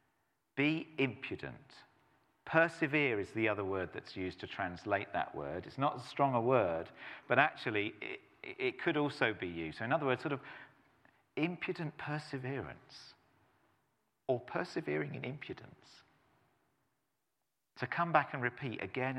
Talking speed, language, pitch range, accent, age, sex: 140 wpm, English, 100-135 Hz, British, 40-59, male